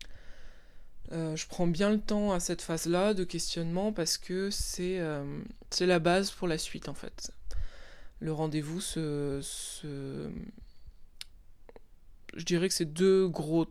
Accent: French